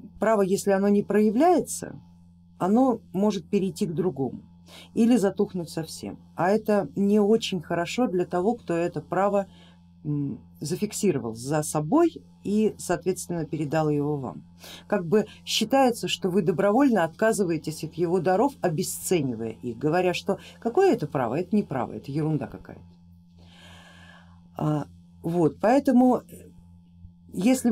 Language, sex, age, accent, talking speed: Russian, female, 50-69, native, 125 wpm